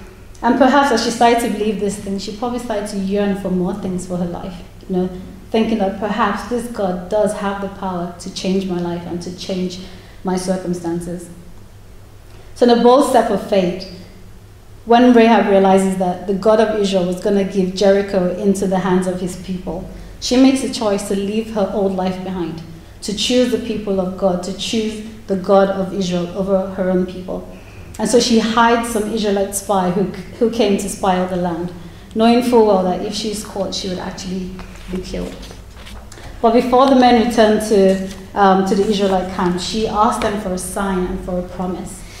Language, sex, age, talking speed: English, female, 30-49, 200 wpm